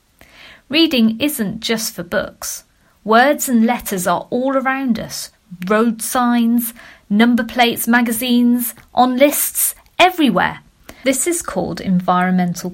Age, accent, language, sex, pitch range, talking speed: 40-59, British, English, female, 185-255 Hz, 115 wpm